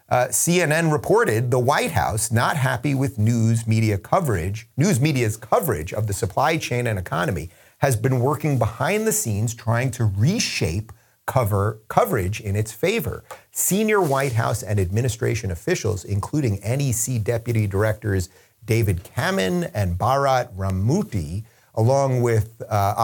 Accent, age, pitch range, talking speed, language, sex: American, 40-59, 105-135 Hz, 140 wpm, English, male